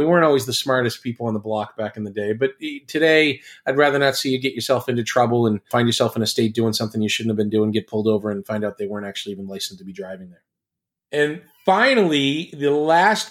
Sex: male